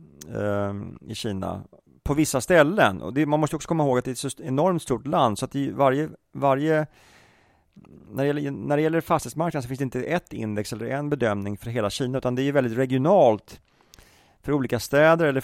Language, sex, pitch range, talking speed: Swedish, male, 105-145 Hz, 205 wpm